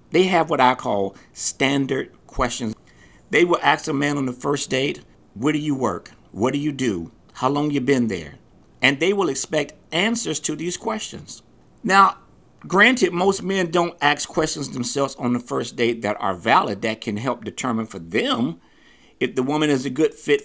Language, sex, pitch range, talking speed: English, male, 125-180 Hz, 190 wpm